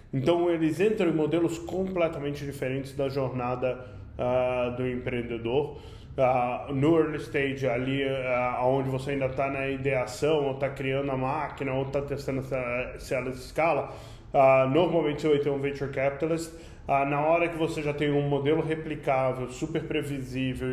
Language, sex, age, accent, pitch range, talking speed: Portuguese, male, 20-39, Brazilian, 130-165 Hz, 165 wpm